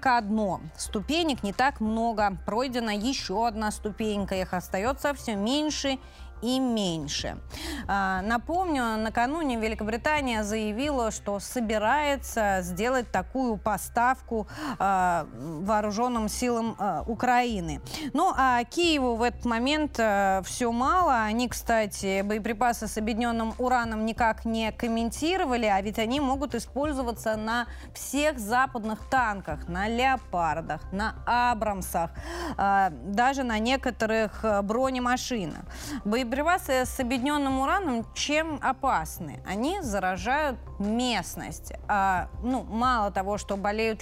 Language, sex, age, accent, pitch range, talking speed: Russian, female, 20-39, native, 205-260 Hz, 110 wpm